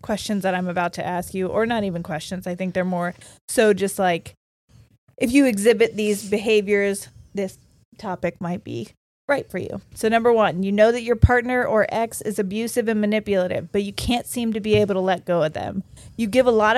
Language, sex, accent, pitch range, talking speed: English, female, American, 190-225 Hz, 215 wpm